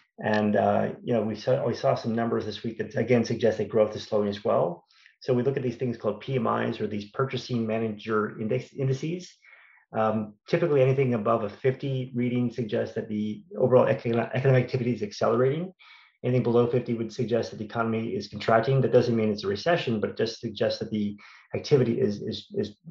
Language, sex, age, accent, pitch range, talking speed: English, male, 30-49, American, 110-130 Hz, 200 wpm